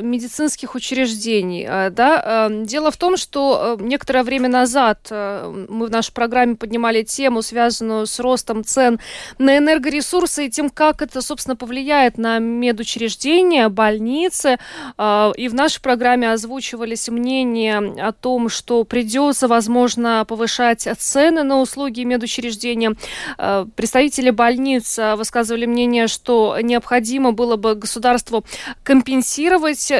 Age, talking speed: 20-39, 110 wpm